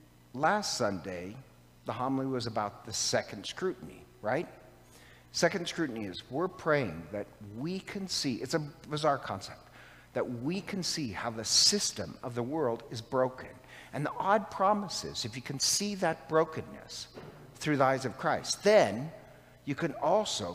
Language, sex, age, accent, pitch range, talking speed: English, male, 60-79, American, 110-150 Hz, 155 wpm